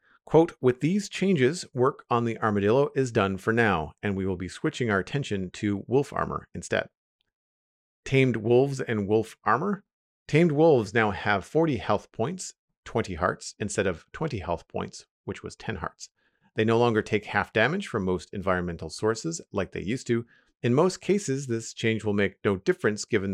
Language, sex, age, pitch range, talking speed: English, male, 40-59, 95-125 Hz, 180 wpm